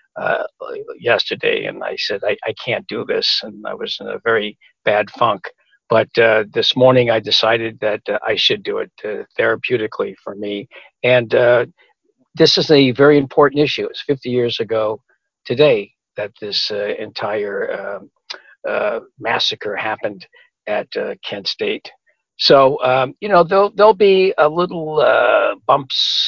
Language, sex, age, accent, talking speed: English, male, 60-79, American, 160 wpm